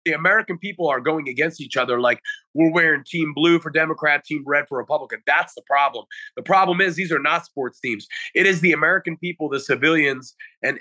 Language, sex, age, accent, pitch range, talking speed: English, male, 30-49, American, 135-170 Hz, 210 wpm